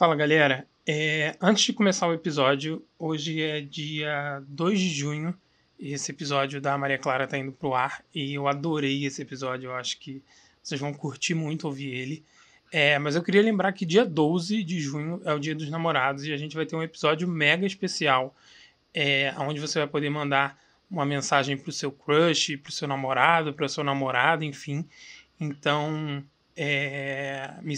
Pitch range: 140-165 Hz